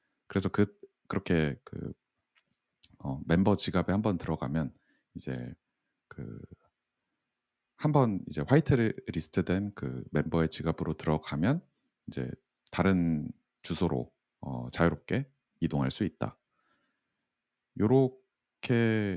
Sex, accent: male, native